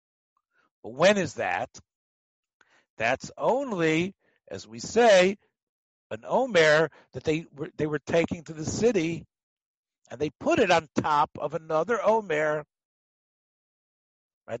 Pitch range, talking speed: 150-195 Hz, 125 wpm